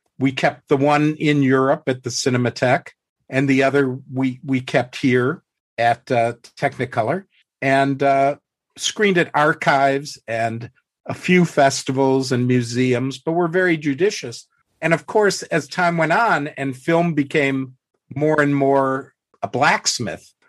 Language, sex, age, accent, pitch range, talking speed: English, male, 50-69, American, 115-140 Hz, 145 wpm